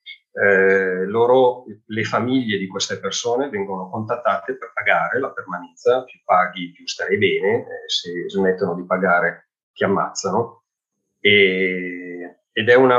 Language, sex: Italian, male